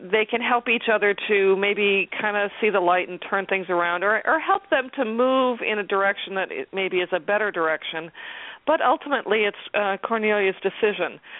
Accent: American